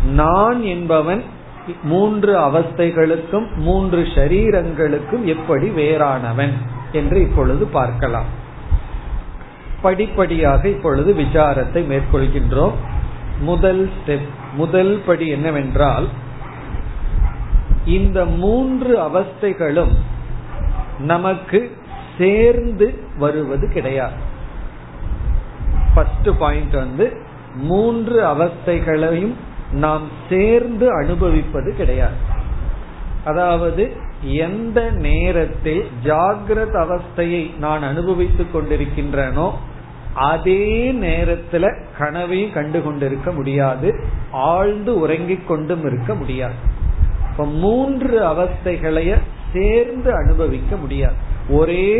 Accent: native